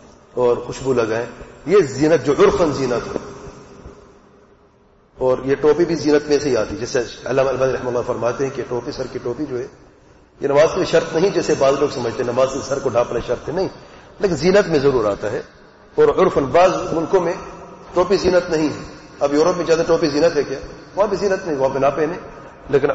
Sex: male